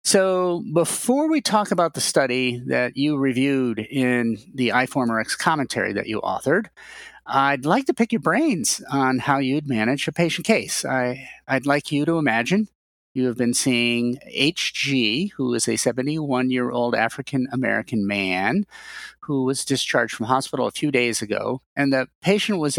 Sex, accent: male, American